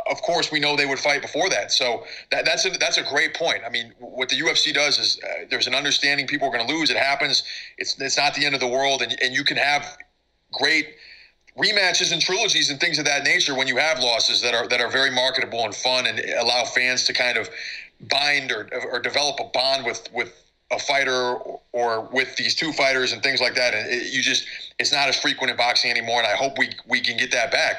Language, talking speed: English, 245 wpm